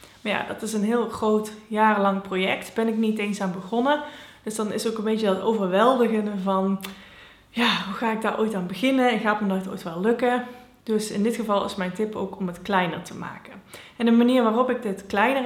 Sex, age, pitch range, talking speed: female, 20-39, 195-235 Hz, 235 wpm